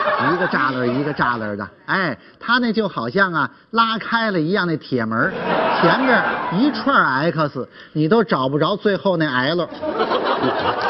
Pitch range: 155-230 Hz